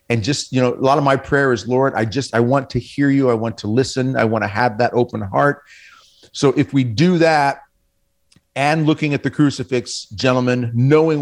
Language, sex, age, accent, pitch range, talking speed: English, male, 40-59, American, 120-150 Hz, 220 wpm